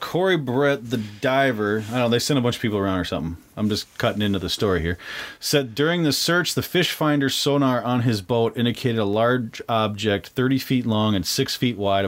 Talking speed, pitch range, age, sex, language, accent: 225 wpm, 115-155 Hz, 30-49, male, English, American